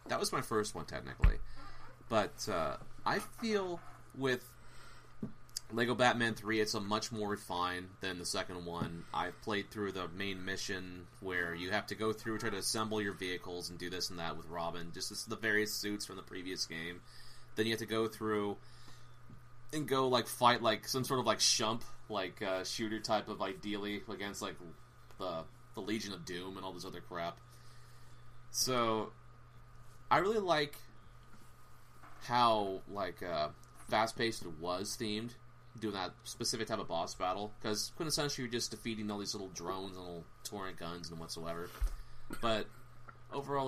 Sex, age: male, 30-49